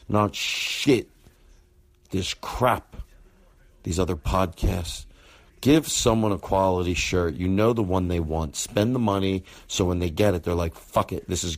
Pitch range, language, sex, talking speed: 90-115 Hz, English, male, 165 wpm